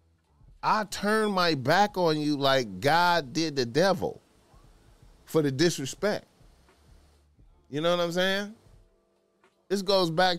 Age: 30-49